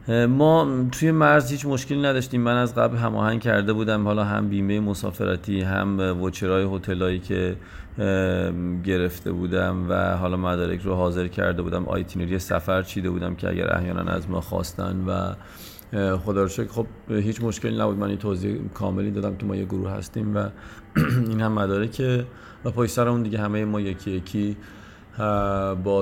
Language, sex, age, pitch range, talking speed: Persian, male, 40-59, 95-105 Hz, 150 wpm